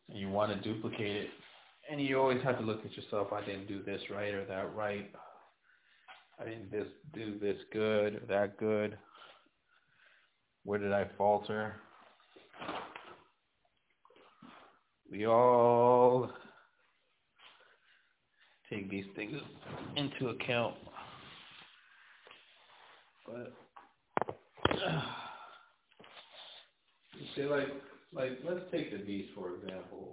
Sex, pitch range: male, 100-120 Hz